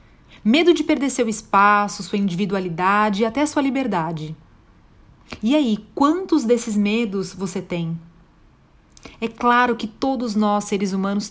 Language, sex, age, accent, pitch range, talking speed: Portuguese, female, 30-49, Brazilian, 180-265 Hz, 135 wpm